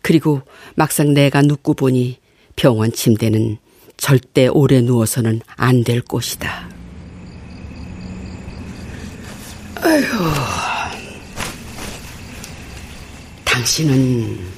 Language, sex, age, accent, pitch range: Korean, female, 50-69, native, 120-165 Hz